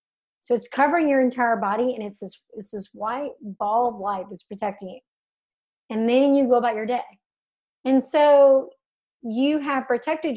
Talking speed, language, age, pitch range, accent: 175 wpm, English, 30-49, 215-275 Hz, American